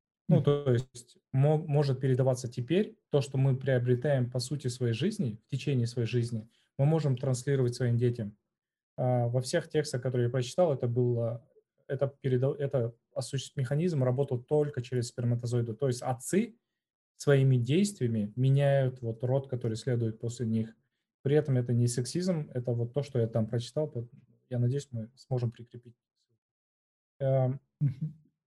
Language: Russian